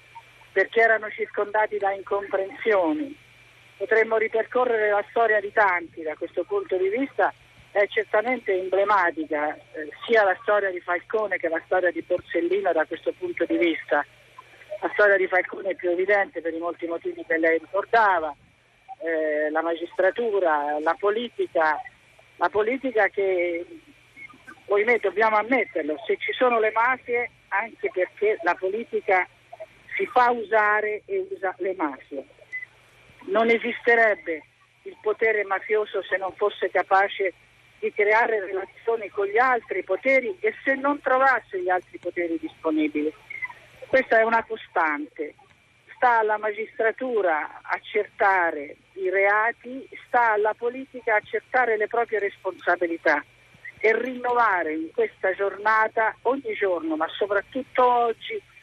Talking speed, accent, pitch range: 130 wpm, native, 180-235 Hz